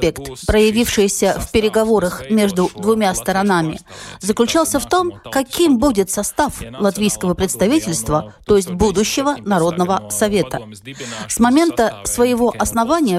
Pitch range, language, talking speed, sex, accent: 180-245 Hz, Russian, 105 wpm, female, native